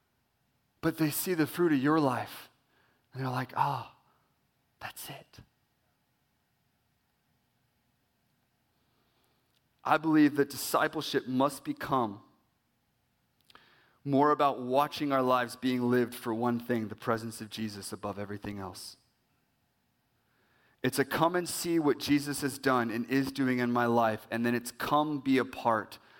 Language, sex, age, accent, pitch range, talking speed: English, male, 30-49, American, 120-170 Hz, 135 wpm